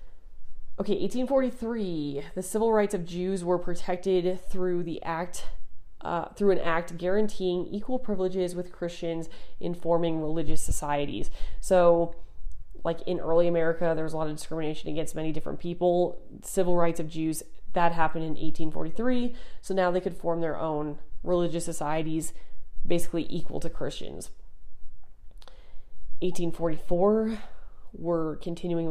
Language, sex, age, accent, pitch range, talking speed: English, female, 30-49, American, 155-185 Hz, 135 wpm